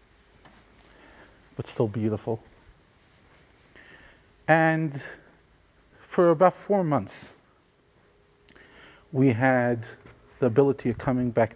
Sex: male